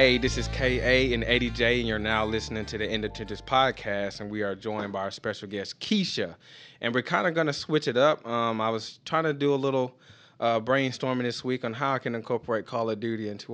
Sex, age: male, 20-39